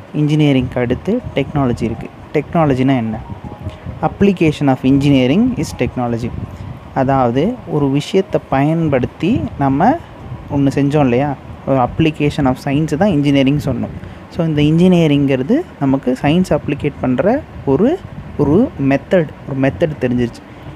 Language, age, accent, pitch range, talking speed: Tamil, 20-39, native, 125-150 Hz, 115 wpm